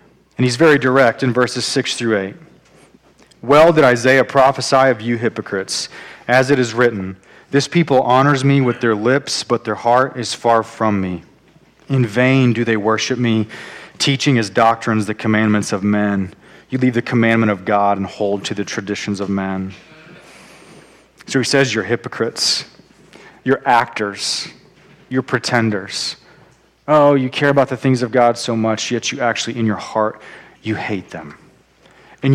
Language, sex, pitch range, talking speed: English, male, 110-135 Hz, 165 wpm